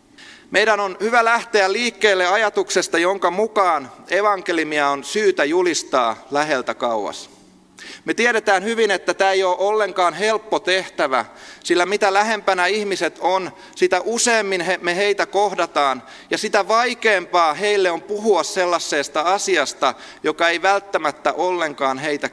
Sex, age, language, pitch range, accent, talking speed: male, 30-49, Finnish, 155-220 Hz, native, 125 wpm